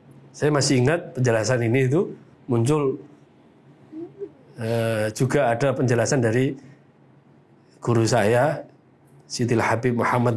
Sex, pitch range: male, 115-145 Hz